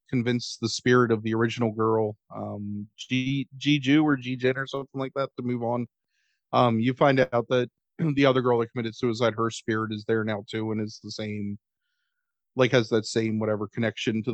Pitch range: 110-130 Hz